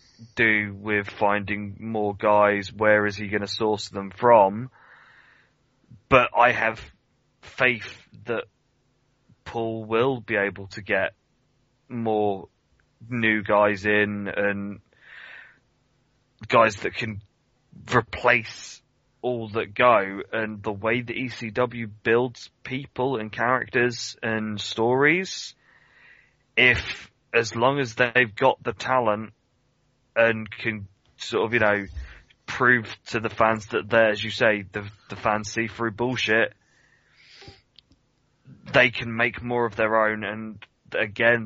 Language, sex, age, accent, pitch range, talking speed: English, male, 20-39, British, 105-120 Hz, 125 wpm